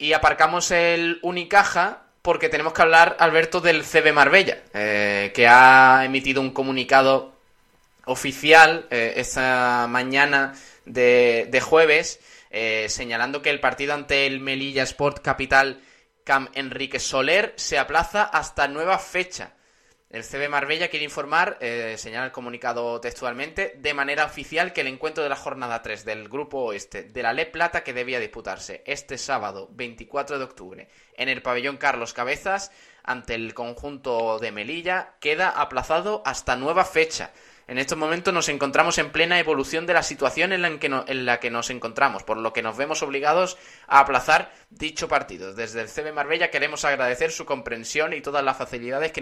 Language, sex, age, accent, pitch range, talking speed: Spanish, male, 20-39, Spanish, 125-160 Hz, 165 wpm